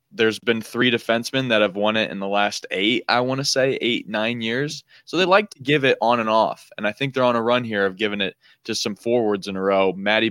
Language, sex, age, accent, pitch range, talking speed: English, male, 20-39, American, 105-135 Hz, 270 wpm